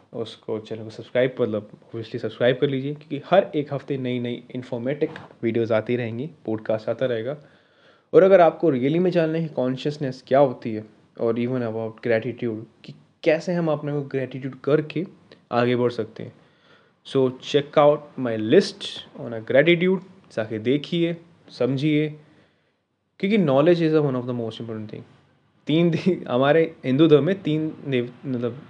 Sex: male